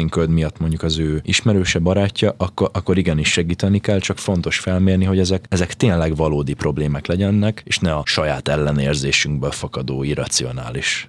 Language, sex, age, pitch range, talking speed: Hungarian, male, 20-39, 80-95 Hz, 150 wpm